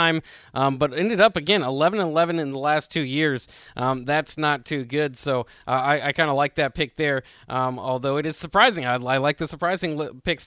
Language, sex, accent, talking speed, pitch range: English, male, American, 205 wpm, 155-195 Hz